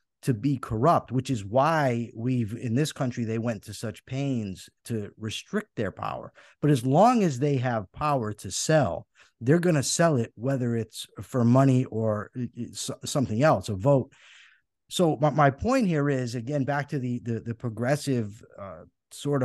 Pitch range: 115-145 Hz